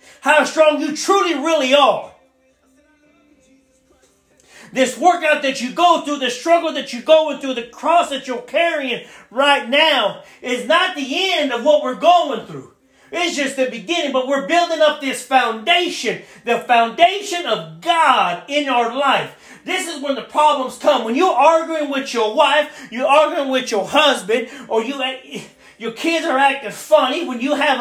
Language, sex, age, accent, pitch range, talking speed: English, male, 40-59, American, 250-295 Hz, 170 wpm